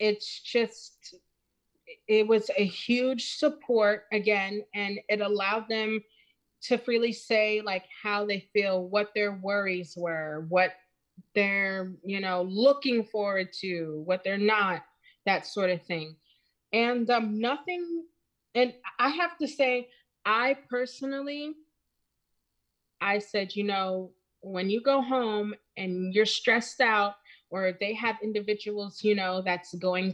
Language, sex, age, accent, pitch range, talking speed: English, female, 30-49, American, 180-225 Hz, 135 wpm